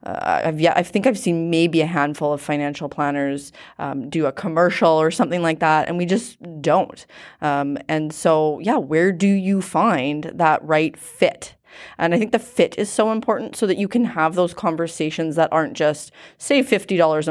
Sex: female